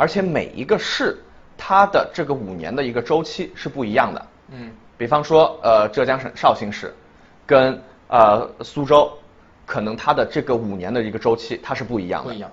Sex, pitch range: male, 115-165 Hz